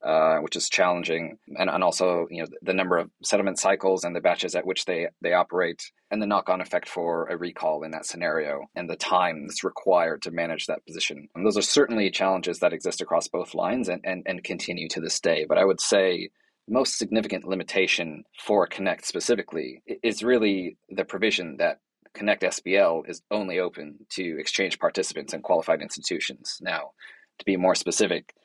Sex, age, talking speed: male, 30-49, 185 wpm